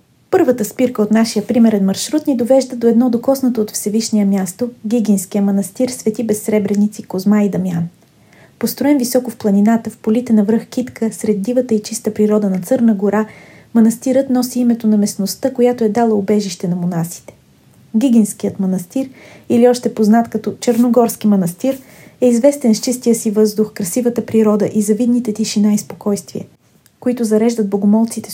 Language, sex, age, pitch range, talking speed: Bulgarian, female, 30-49, 210-245 Hz, 155 wpm